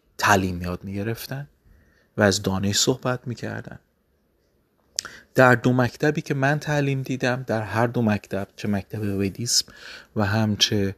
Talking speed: 130 wpm